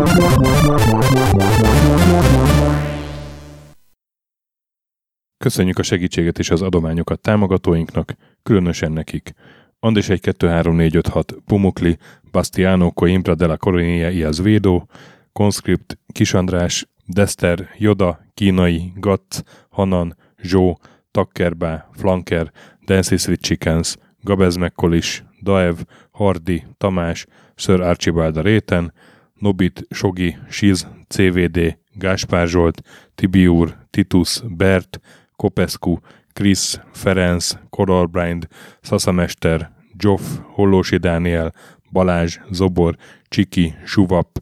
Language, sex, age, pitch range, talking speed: Hungarian, male, 30-49, 85-100 Hz, 75 wpm